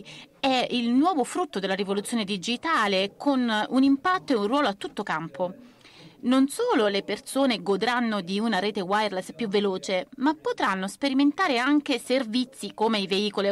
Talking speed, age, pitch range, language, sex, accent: 155 wpm, 30-49, 200-250 Hz, Italian, female, native